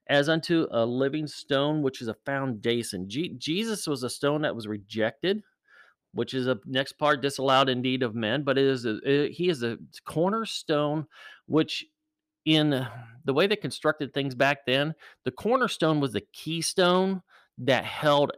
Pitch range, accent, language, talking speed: 125-155 Hz, American, English, 150 wpm